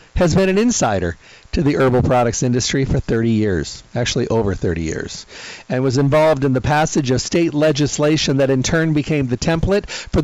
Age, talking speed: 50-69, 190 wpm